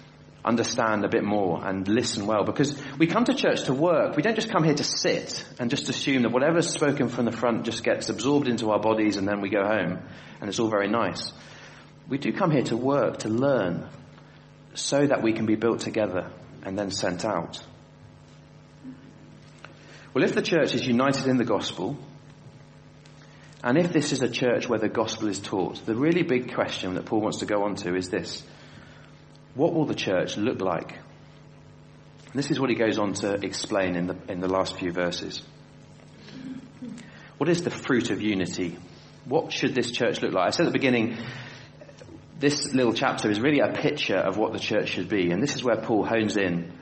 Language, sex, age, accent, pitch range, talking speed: English, male, 30-49, British, 105-140 Hz, 200 wpm